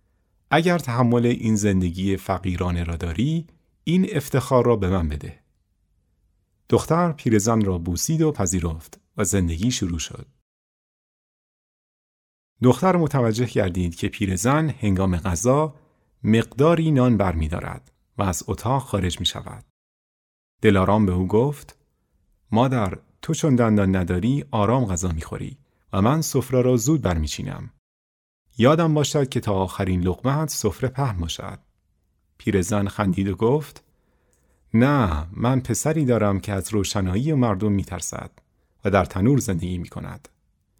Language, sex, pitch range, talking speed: Persian, male, 95-125 Hz, 125 wpm